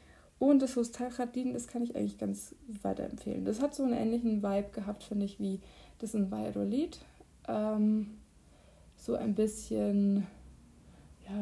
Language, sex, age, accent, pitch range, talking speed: German, female, 20-39, German, 190-225 Hz, 140 wpm